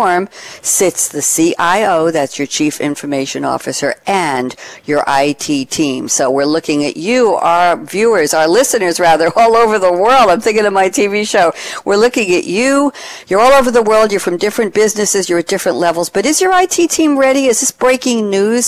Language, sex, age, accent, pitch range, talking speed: English, female, 60-79, American, 160-225 Hz, 190 wpm